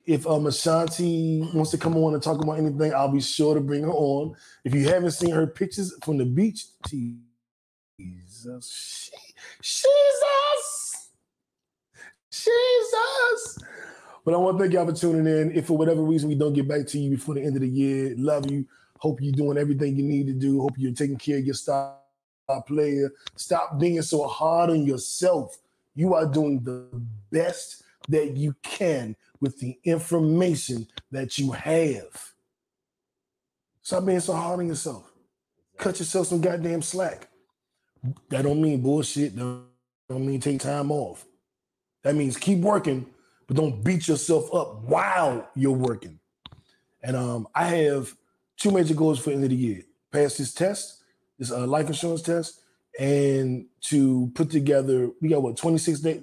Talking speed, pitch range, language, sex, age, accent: 165 wpm, 135-165 Hz, English, male, 20-39, American